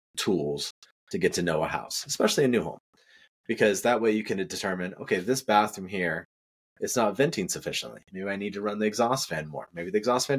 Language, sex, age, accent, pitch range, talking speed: English, male, 30-49, American, 85-110 Hz, 220 wpm